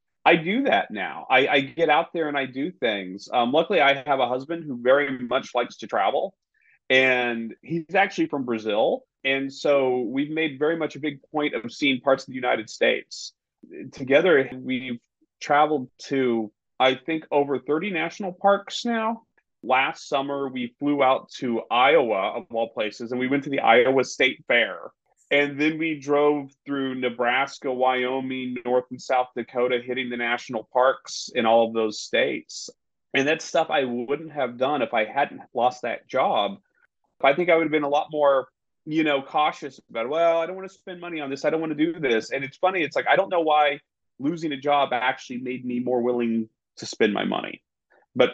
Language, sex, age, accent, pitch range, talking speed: English, male, 30-49, American, 125-150 Hz, 195 wpm